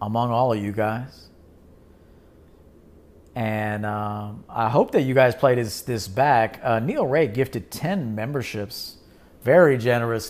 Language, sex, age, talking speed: English, male, 40-59, 140 wpm